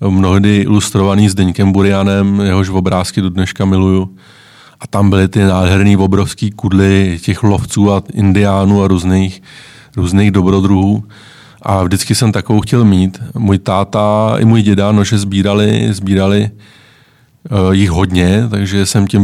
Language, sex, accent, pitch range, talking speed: Czech, male, native, 95-110 Hz, 135 wpm